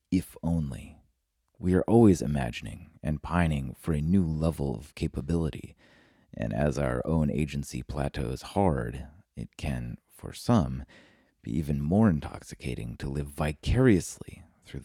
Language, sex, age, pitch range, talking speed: English, male, 30-49, 70-85 Hz, 135 wpm